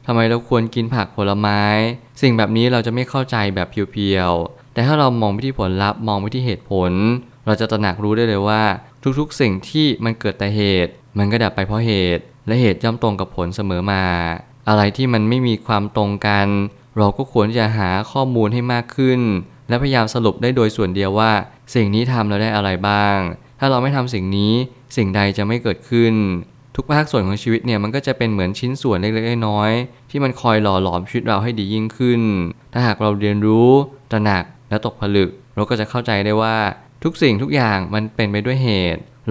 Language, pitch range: Thai, 100-125 Hz